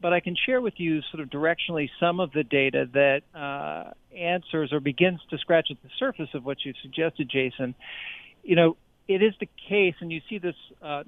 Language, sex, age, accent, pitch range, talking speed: English, male, 50-69, American, 135-170 Hz, 210 wpm